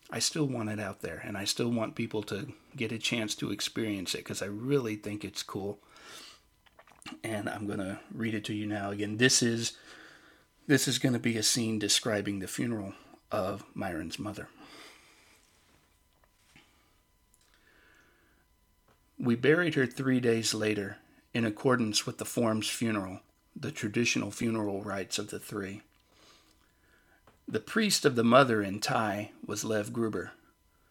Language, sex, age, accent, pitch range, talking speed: English, male, 40-59, American, 105-120 Hz, 150 wpm